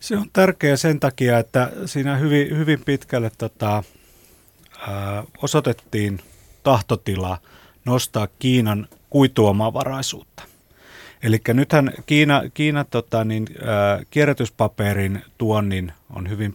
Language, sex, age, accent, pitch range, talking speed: Finnish, male, 30-49, native, 105-135 Hz, 100 wpm